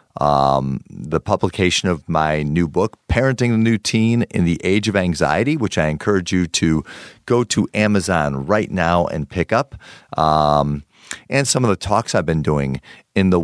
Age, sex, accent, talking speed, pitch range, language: 50-69, male, American, 180 wpm, 75-105 Hz, English